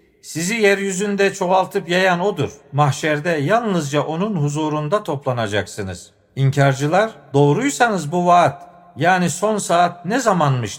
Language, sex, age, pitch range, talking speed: Turkish, male, 50-69, 145-190 Hz, 105 wpm